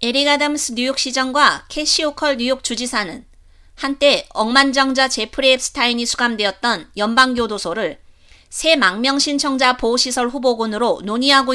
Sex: female